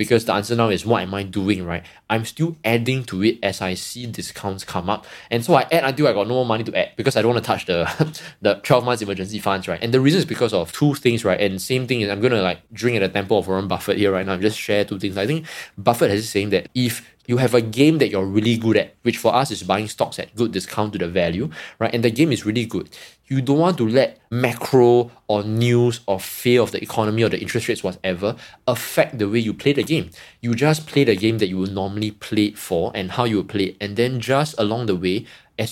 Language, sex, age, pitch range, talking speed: English, male, 20-39, 100-130 Hz, 270 wpm